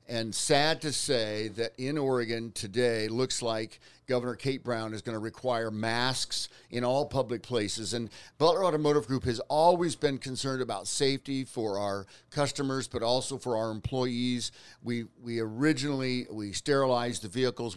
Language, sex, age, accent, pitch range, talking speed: English, male, 50-69, American, 110-140 Hz, 160 wpm